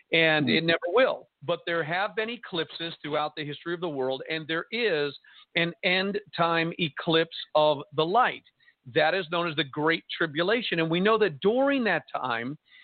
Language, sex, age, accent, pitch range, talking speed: English, male, 50-69, American, 155-200 Hz, 180 wpm